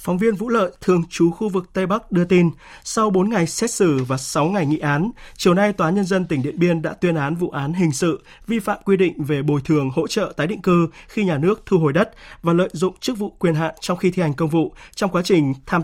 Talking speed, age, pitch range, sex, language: 275 wpm, 20-39, 150-190 Hz, male, Vietnamese